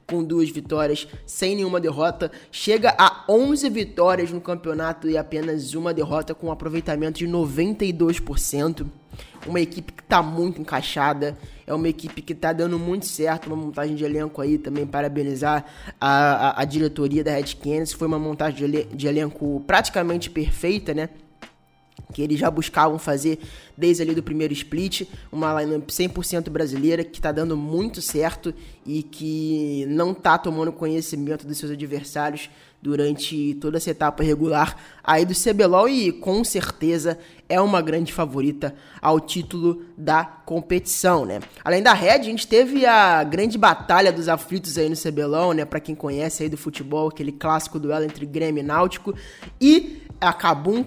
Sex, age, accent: male, 20-39, Brazilian